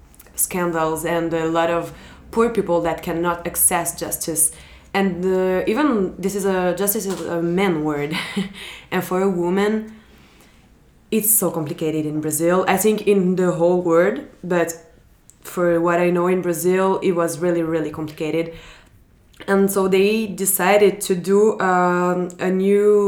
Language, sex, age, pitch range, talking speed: Italian, female, 20-39, 170-200 Hz, 150 wpm